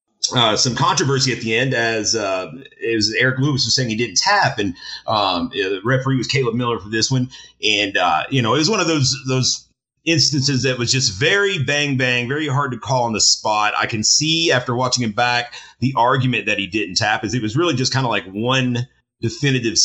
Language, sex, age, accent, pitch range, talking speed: English, male, 30-49, American, 105-130 Hz, 225 wpm